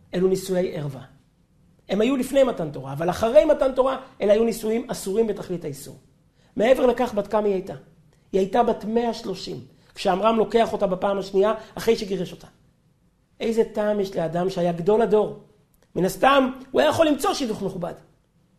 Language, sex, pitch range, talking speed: Hebrew, male, 195-260 Hz, 165 wpm